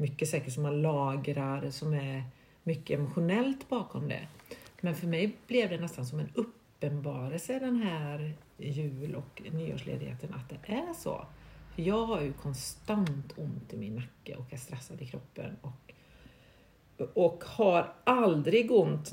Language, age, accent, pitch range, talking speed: English, 50-69, Swedish, 145-195 Hz, 145 wpm